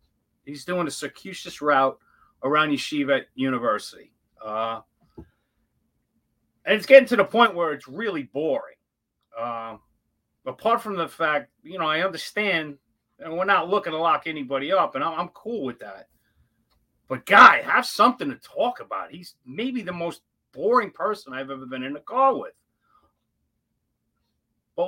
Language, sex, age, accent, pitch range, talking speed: English, male, 40-59, American, 125-180 Hz, 150 wpm